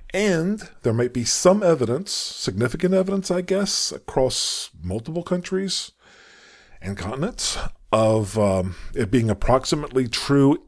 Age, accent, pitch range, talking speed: 50-69, American, 100-170 Hz, 120 wpm